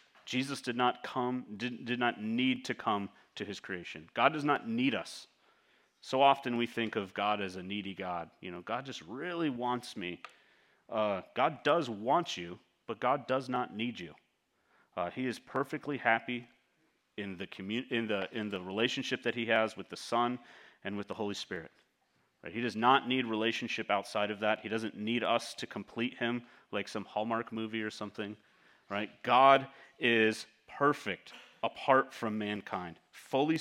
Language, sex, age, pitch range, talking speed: English, male, 30-49, 105-130 Hz, 175 wpm